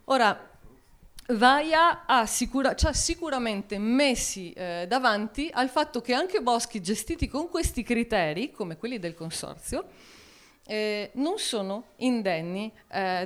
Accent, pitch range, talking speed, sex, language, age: native, 175-245 Hz, 120 wpm, female, Italian, 40-59